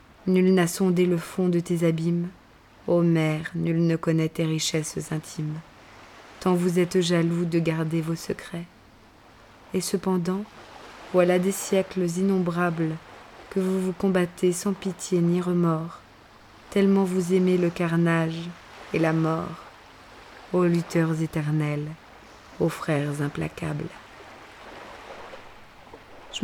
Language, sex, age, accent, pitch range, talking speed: English, female, 20-39, French, 160-180 Hz, 120 wpm